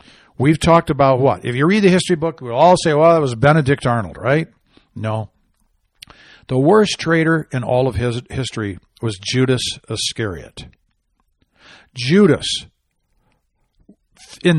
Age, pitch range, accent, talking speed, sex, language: 60-79, 110-165 Hz, American, 135 wpm, male, English